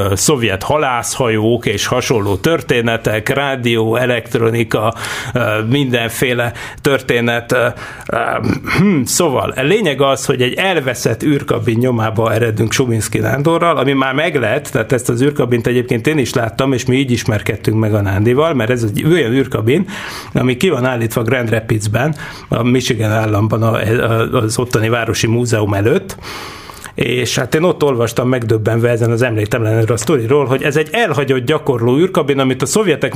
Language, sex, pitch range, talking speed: Hungarian, male, 115-140 Hz, 140 wpm